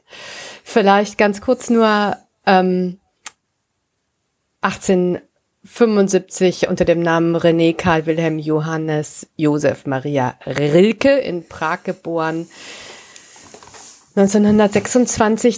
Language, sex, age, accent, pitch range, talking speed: German, female, 50-69, German, 175-205 Hz, 75 wpm